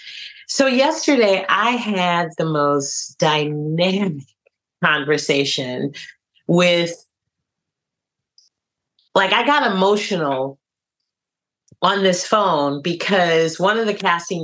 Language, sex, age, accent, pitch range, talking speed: English, female, 40-59, American, 145-195 Hz, 85 wpm